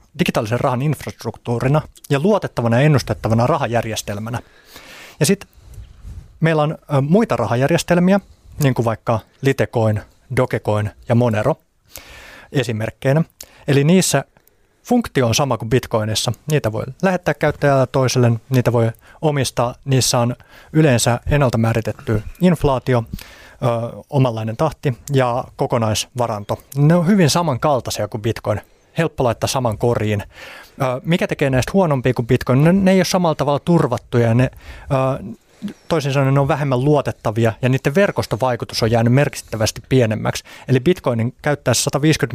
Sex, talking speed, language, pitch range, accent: male, 125 wpm, Finnish, 115-150 Hz, native